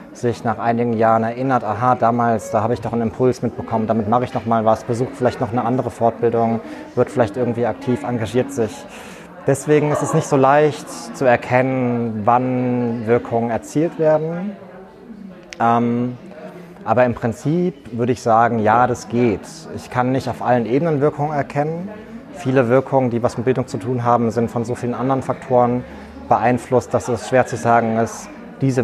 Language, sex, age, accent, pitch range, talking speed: German, male, 30-49, German, 110-130 Hz, 175 wpm